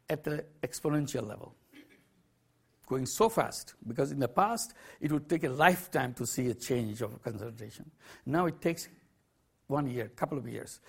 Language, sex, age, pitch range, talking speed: English, male, 60-79, 125-170 Hz, 170 wpm